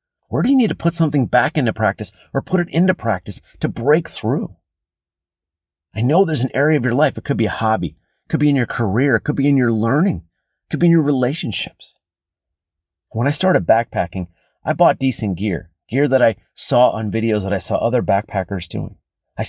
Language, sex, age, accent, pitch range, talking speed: English, male, 30-49, American, 95-140 Hz, 215 wpm